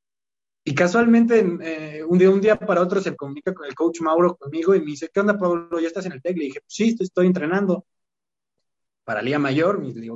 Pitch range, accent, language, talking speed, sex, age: 130-170 Hz, Mexican, Spanish, 230 wpm, male, 20-39